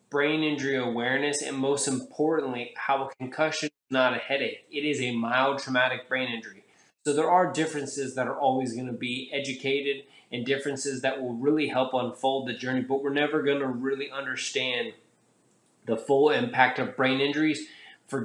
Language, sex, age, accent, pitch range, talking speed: English, male, 20-39, American, 125-145 Hz, 180 wpm